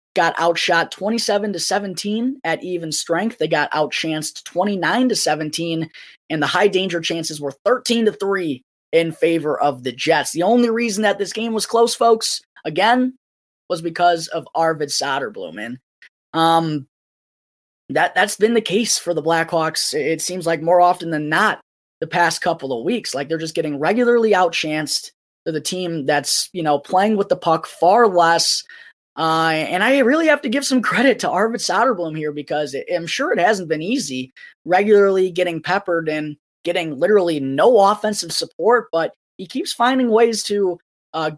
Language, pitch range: English, 155-205 Hz